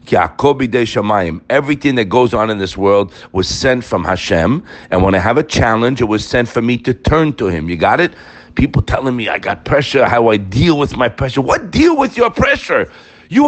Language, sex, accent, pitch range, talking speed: English, male, American, 120-185 Hz, 210 wpm